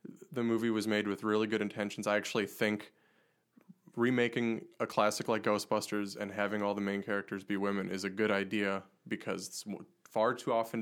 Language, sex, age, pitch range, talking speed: English, male, 20-39, 100-115 Hz, 185 wpm